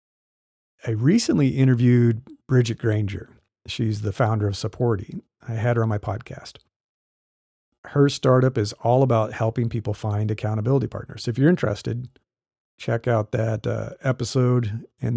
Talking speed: 140 wpm